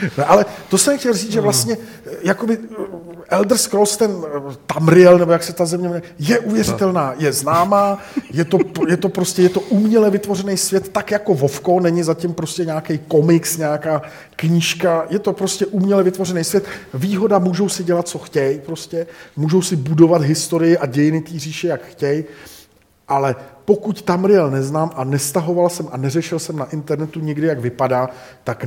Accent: native